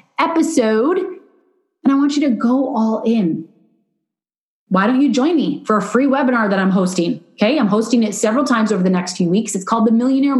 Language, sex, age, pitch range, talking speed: English, female, 30-49, 190-255 Hz, 210 wpm